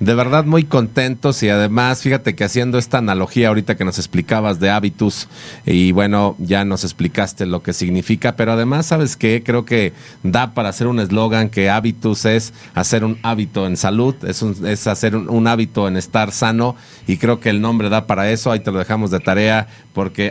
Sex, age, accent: male, 40-59, Mexican